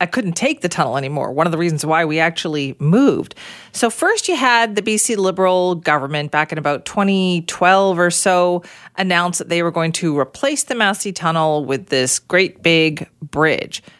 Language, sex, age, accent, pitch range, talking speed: English, female, 40-59, American, 165-225 Hz, 185 wpm